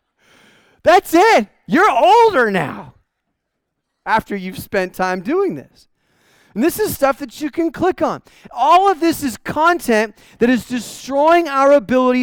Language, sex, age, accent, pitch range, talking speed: English, male, 30-49, American, 210-280 Hz, 145 wpm